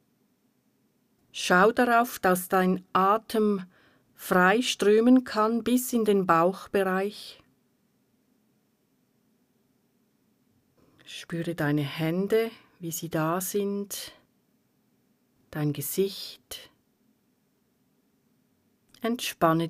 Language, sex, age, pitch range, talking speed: German, female, 40-59, 170-225 Hz, 65 wpm